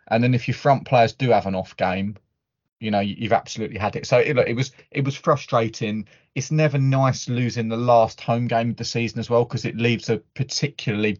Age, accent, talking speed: 20-39, British, 230 wpm